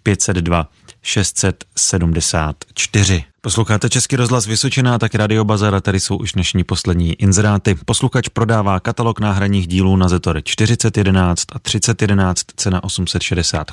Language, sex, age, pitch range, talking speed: Czech, male, 30-49, 90-105 Hz, 110 wpm